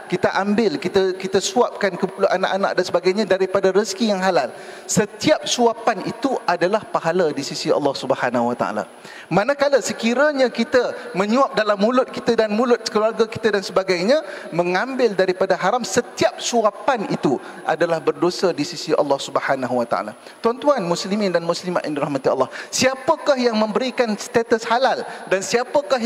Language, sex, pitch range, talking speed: English, male, 180-240 Hz, 145 wpm